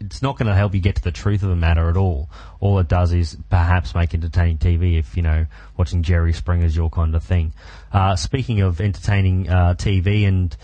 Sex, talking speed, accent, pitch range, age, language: male, 230 wpm, Australian, 85-95 Hz, 30-49, English